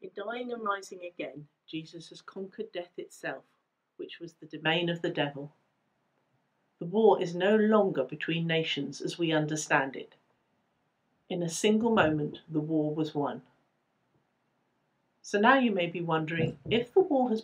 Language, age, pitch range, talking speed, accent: English, 50-69, 155-210 Hz, 160 wpm, British